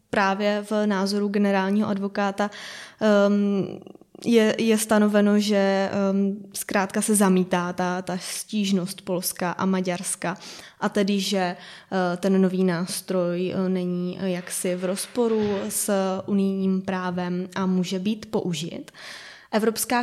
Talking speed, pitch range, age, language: 115 wpm, 195-220 Hz, 20-39, Czech